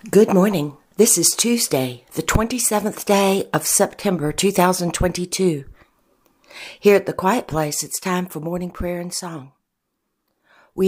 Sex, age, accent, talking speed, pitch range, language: female, 60-79, American, 130 wpm, 145-200 Hz, English